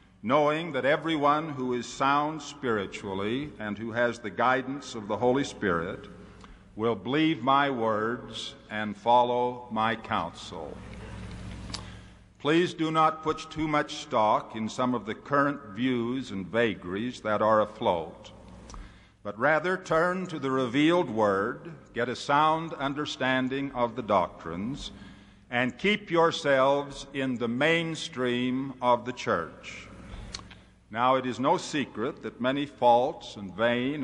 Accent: American